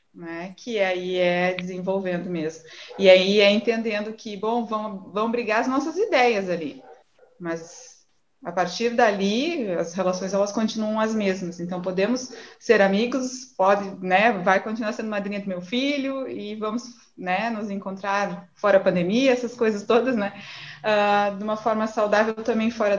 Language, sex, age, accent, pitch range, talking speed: Portuguese, female, 20-39, Brazilian, 185-230 Hz, 160 wpm